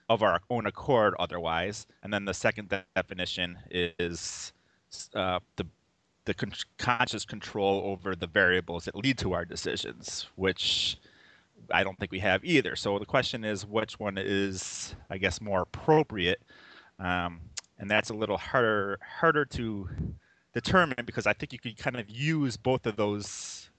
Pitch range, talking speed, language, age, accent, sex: 95-115 Hz, 160 wpm, English, 30-49, American, male